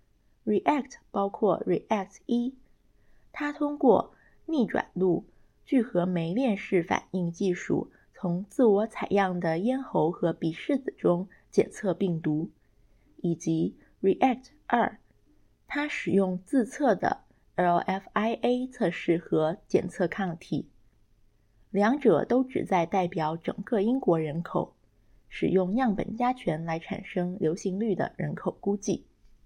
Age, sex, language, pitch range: 20-39, female, English, 165-225 Hz